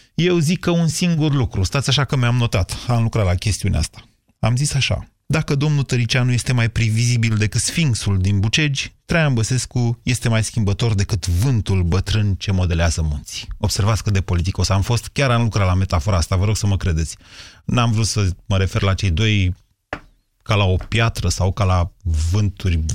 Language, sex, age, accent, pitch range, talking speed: Romanian, male, 30-49, native, 100-135 Hz, 195 wpm